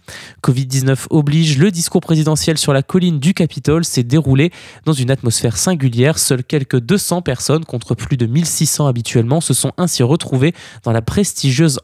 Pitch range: 125-160 Hz